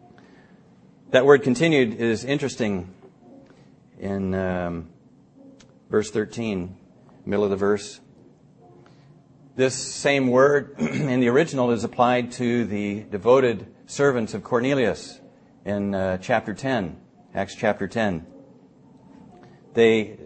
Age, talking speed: 40-59, 105 wpm